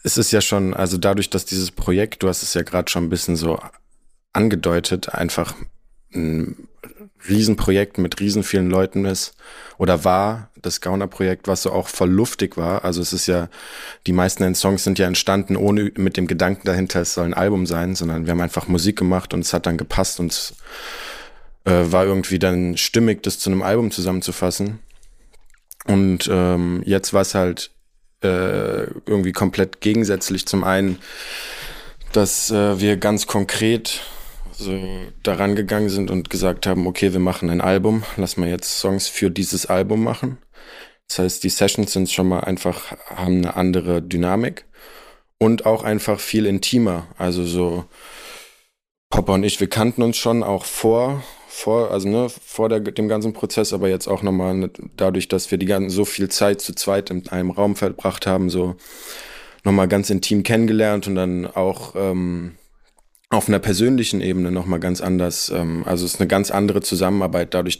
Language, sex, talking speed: German, male, 175 wpm